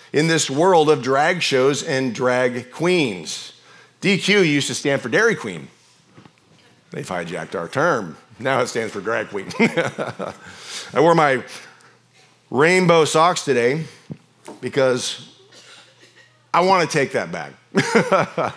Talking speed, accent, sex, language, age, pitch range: 125 wpm, American, male, English, 40-59, 120-160 Hz